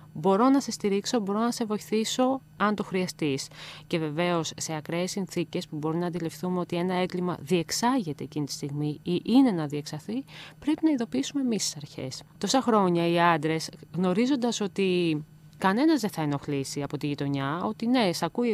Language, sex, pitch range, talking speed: Greek, female, 155-210 Hz, 175 wpm